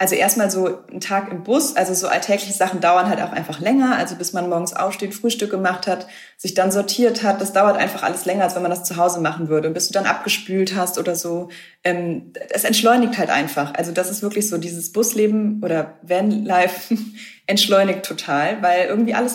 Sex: female